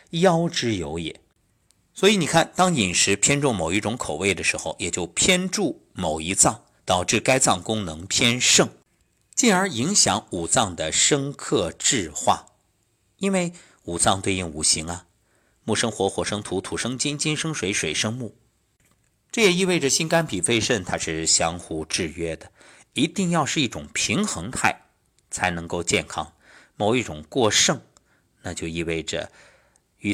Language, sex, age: Chinese, male, 50-69